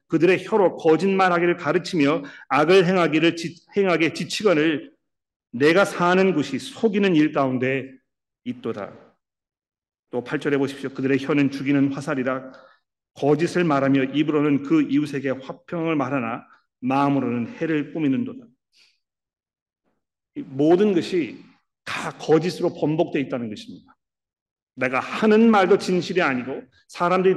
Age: 40-59